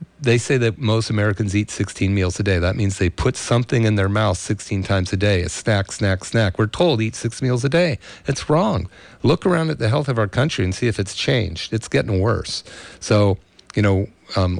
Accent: American